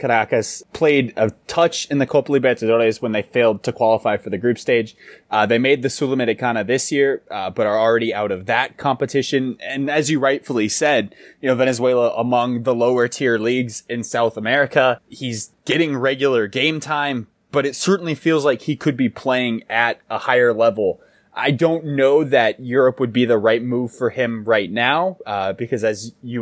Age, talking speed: 20-39, 190 wpm